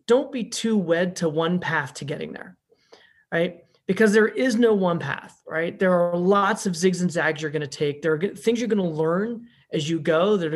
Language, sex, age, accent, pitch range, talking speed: English, male, 30-49, American, 160-215 Hz, 225 wpm